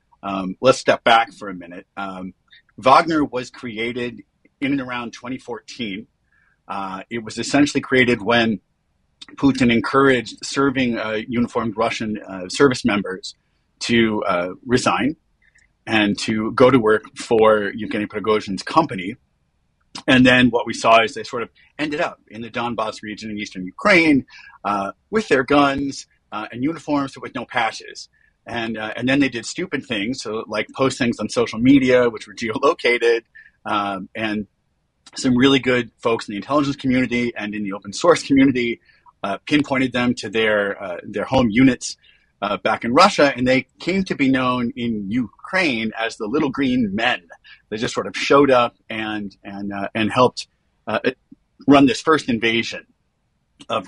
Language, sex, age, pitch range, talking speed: English, male, 40-59, 105-135 Hz, 160 wpm